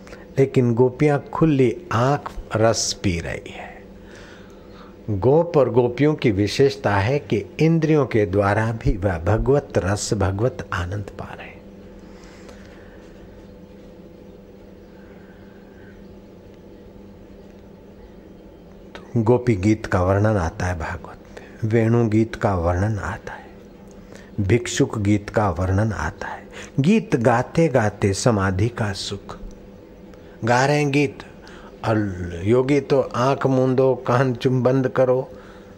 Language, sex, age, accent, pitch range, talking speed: Hindi, male, 60-79, native, 100-125 Hz, 95 wpm